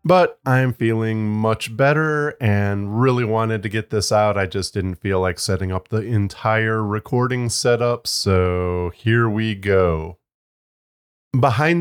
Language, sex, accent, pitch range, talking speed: English, male, American, 95-130 Hz, 140 wpm